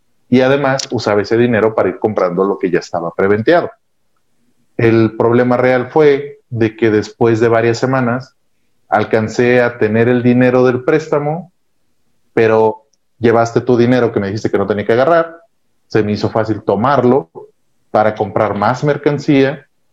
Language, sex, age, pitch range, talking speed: Spanish, male, 40-59, 110-130 Hz, 155 wpm